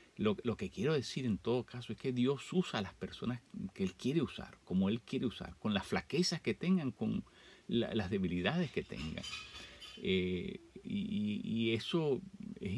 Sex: male